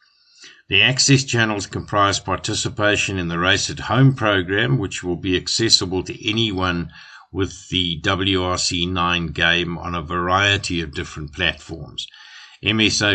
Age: 50-69